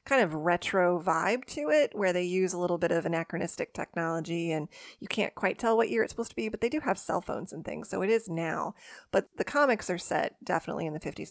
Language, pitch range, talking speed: English, 170-210 Hz, 250 wpm